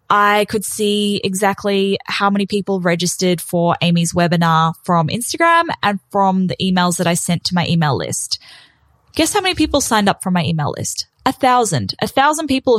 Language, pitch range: English, 170-230 Hz